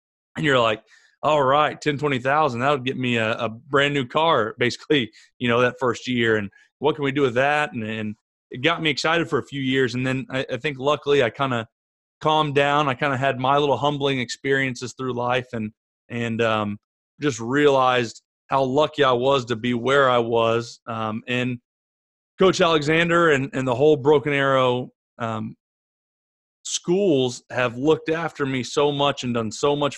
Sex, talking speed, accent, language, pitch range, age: male, 190 wpm, American, English, 120-145 Hz, 30-49